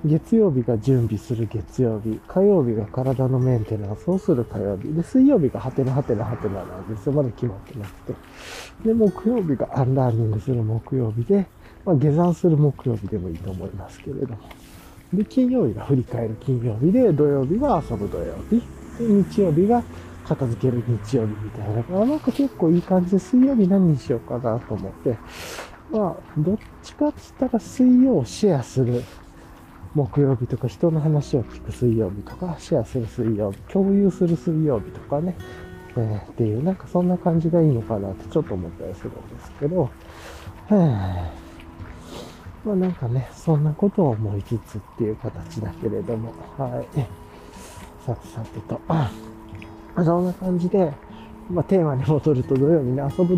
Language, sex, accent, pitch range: Japanese, male, native, 110-170 Hz